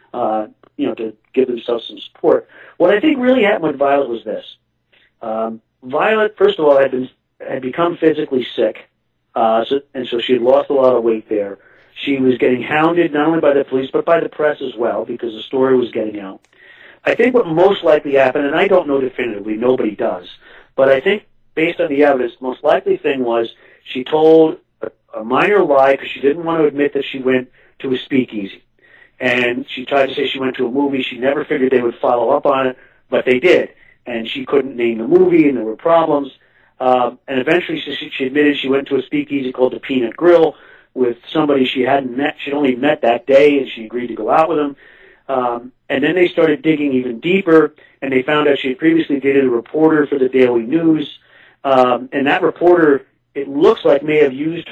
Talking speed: 220 wpm